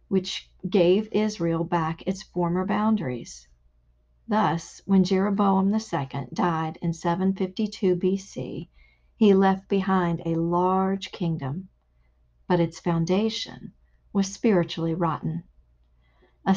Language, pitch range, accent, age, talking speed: English, 165-205 Hz, American, 50-69, 100 wpm